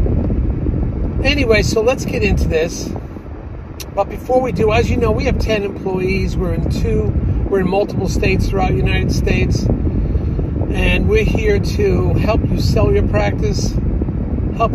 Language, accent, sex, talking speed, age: English, American, male, 155 wpm, 50-69